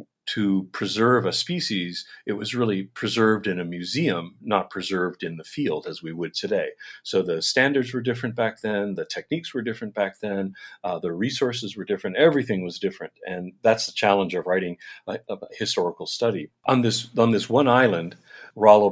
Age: 40-59